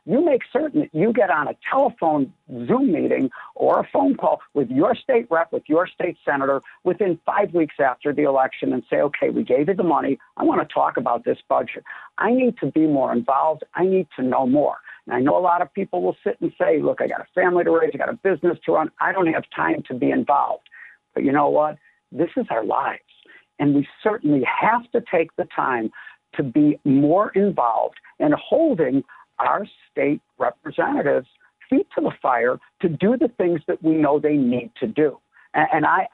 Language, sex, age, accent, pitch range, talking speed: English, male, 60-79, American, 145-205 Hz, 215 wpm